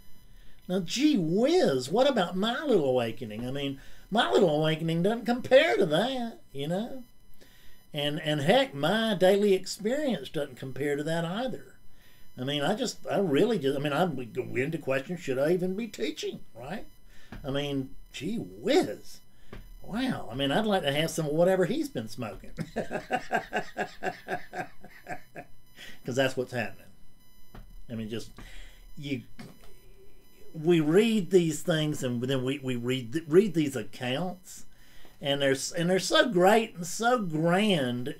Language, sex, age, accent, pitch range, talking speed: English, male, 50-69, American, 130-200 Hz, 150 wpm